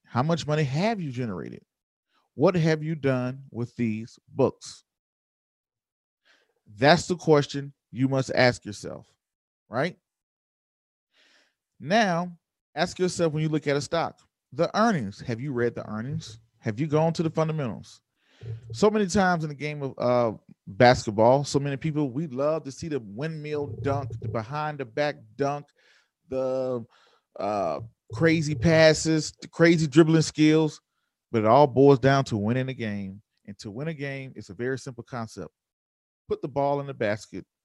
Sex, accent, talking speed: male, American, 155 wpm